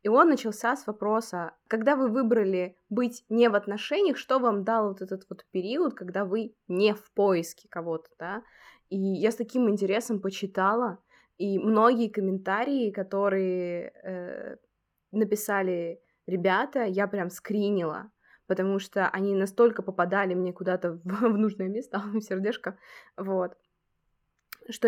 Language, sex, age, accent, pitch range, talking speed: Russian, female, 20-39, native, 185-215 Hz, 135 wpm